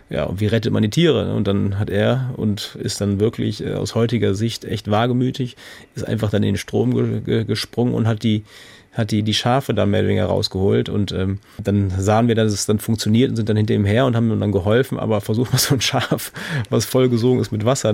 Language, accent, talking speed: German, German, 240 wpm